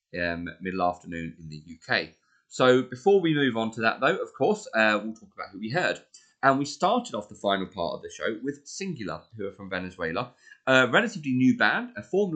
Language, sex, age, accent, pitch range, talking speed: English, male, 30-49, British, 105-135 Hz, 215 wpm